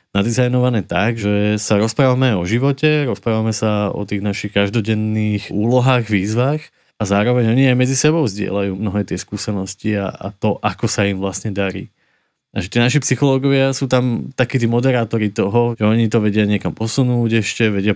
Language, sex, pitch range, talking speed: Slovak, male, 100-120 Hz, 175 wpm